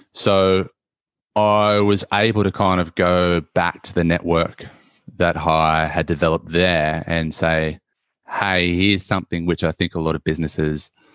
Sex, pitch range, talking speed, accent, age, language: male, 80-95 Hz, 155 wpm, Australian, 20-39, English